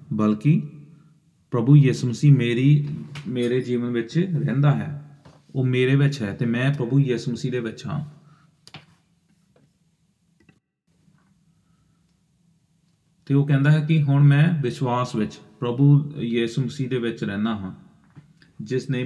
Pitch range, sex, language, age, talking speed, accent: 120-155 Hz, male, English, 30-49, 120 wpm, Indian